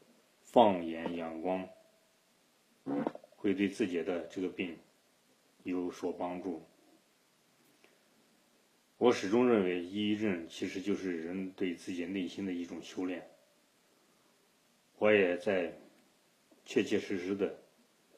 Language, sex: Chinese, male